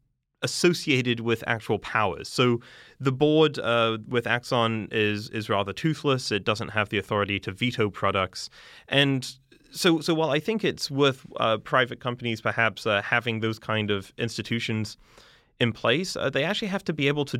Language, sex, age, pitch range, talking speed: English, male, 30-49, 100-120 Hz, 170 wpm